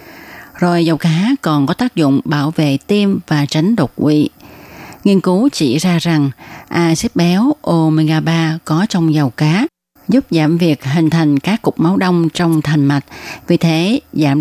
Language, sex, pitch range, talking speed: Vietnamese, female, 155-195 Hz, 175 wpm